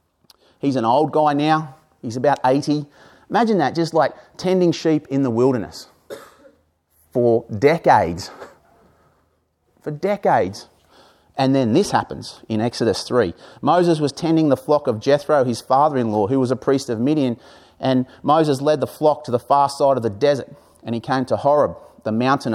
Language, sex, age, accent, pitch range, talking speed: English, male, 30-49, Australian, 125-155 Hz, 165 wpm